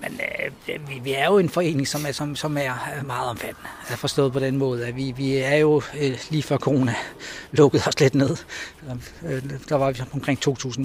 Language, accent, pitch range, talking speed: Danish, native, 130-145 Hz, 220 wpm